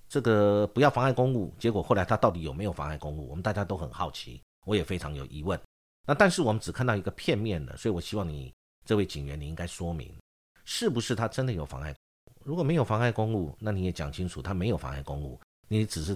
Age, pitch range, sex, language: 50-69, 85-115 Hz, male, Chinese